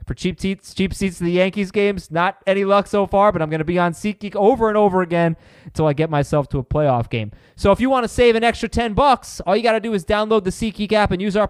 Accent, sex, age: American, male, 30-49